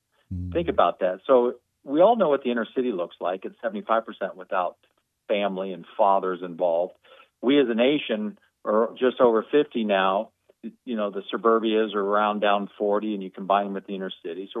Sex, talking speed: male, 195 wpm